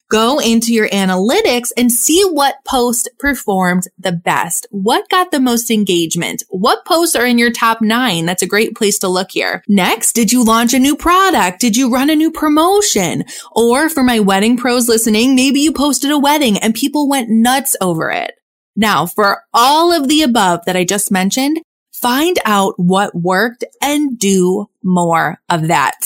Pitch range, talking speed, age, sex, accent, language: 195-285 Hz, 180 wpm, 20-39, female, American, English